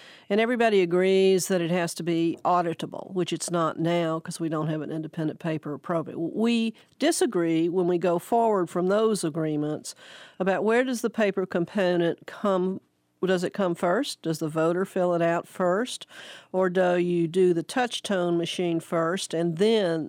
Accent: American